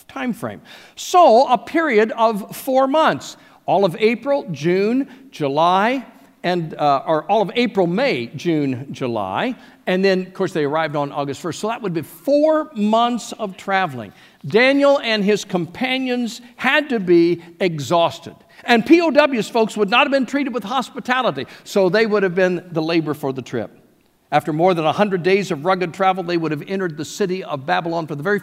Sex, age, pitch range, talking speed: male, 50-69, 160-215 Hz, 180 wpm